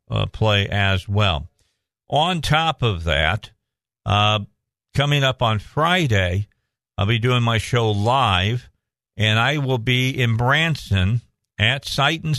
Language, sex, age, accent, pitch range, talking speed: English, male, 50-69, American, 105-125 Hz, 135 wpm